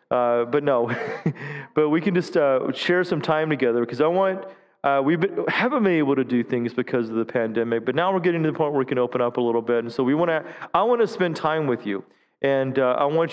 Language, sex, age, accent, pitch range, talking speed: English, male, 30-49, American, 125-165 Hz, 260 wpm